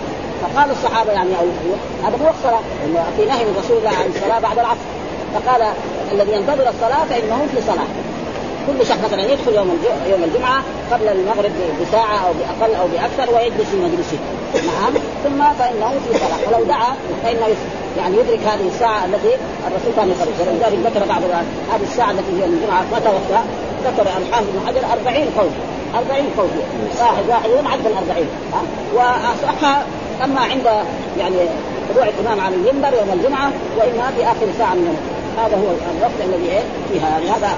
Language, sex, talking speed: Arabic, female, 165 wpm